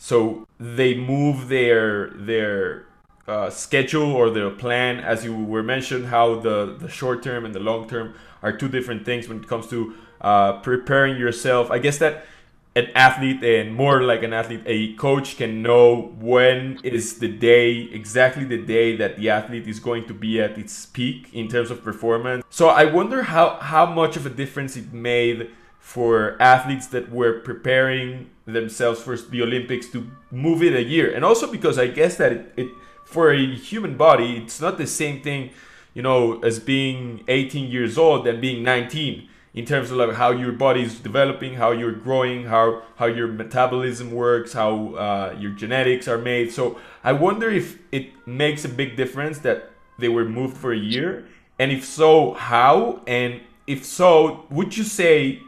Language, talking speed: English, 185 wpm